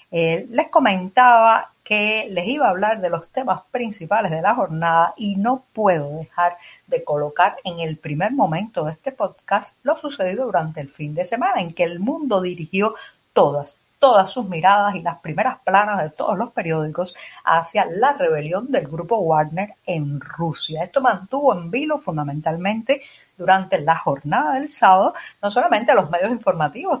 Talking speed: 170 wpm